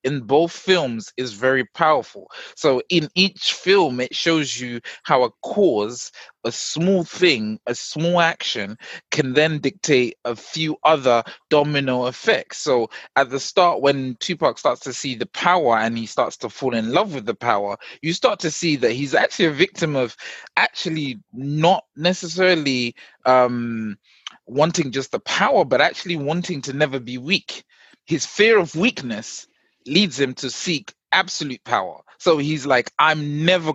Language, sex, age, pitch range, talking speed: English, male, 20-39, 125-170 Hz, 160 wpm